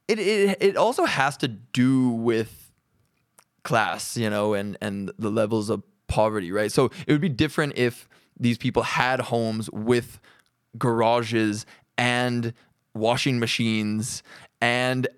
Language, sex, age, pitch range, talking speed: English, male, 20-39, 110-130 Hz, 135 wpm